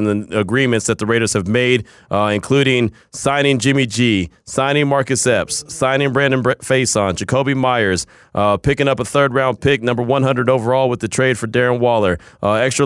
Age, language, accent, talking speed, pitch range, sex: 30-49, English, American, 180 wpm, 110-130 Hz, male